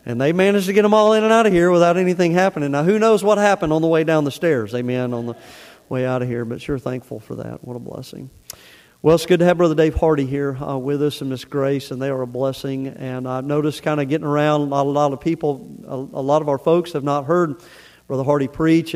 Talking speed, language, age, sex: 265 wpm, English, 40-59, male